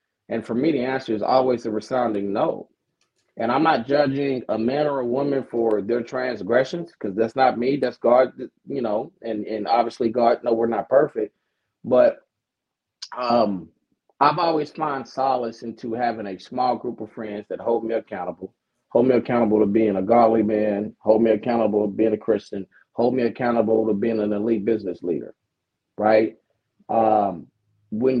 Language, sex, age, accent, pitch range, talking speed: English, male, 30-49, American, 110-130 Hz, 175 wpm